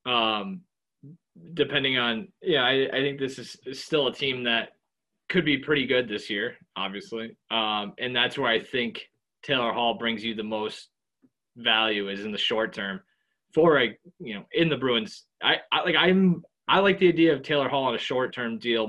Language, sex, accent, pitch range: English, male, American, 110-145 Hz